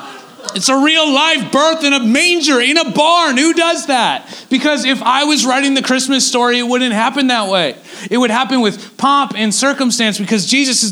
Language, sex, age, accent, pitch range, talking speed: English, male, 40-59, American, 195-265 Hz, 205 wpm